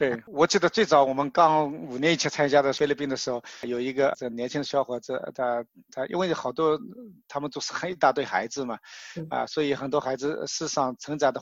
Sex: male